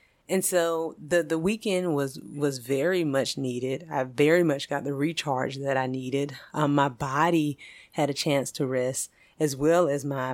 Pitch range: 135-170 Hz